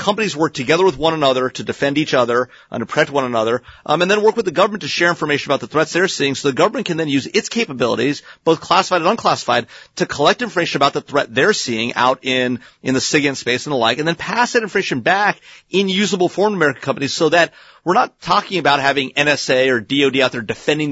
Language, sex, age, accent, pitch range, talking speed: English, male, 30-49, American, 130-180 Hz, 240 wpm